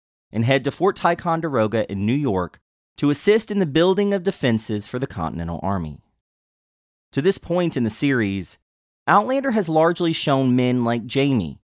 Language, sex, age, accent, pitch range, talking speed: English, male, 30-49, American, 95-145 Hz, 165 wpm